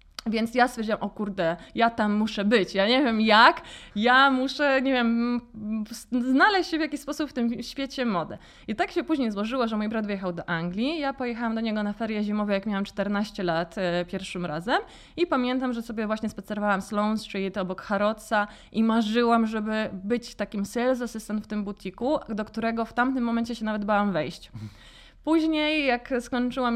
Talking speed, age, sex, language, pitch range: 190 wpm, 20-39, female, Polish, 205-245 Hz